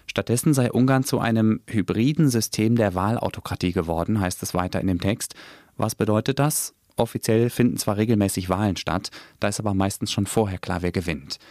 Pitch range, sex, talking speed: 95-115 Hz, male, 175 wpm